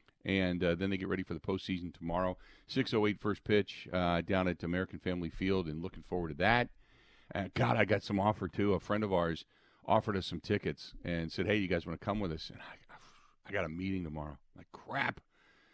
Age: 50-69